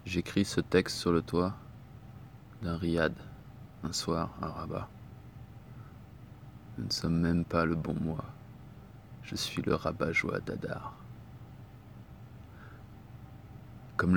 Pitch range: 85-120 Hz